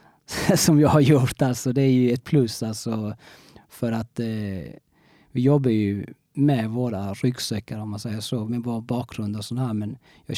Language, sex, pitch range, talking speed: Swedish, male, 110-125 Hz, 185 wpm